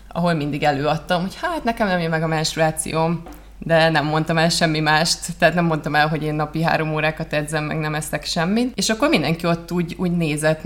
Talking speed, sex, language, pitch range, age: 215 wpm, female, Hungarian, 150-170 Hz, 20-39